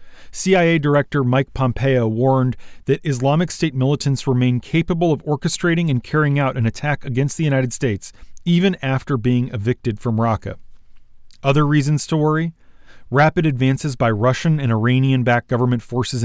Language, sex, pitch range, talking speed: English, male, 115-145 Hz, 150 wpm